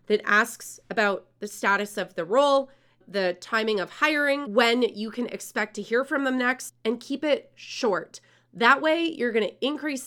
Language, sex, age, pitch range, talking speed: English, female, 30-49, 210-275 Hz, 180 wpm